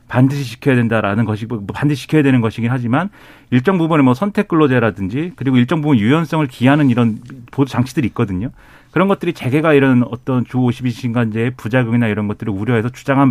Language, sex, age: Korean, male, 40-59